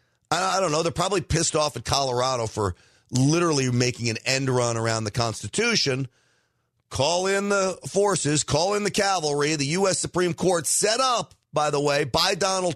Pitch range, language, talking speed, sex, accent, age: 110-155 Hz, English, 175 wpm, male, American, 40-59